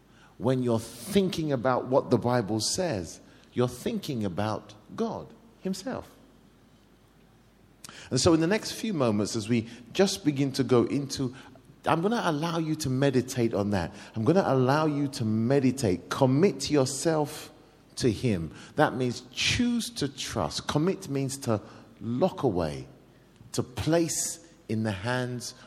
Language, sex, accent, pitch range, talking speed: English, male, British, 110-155 Hz, 145 wpm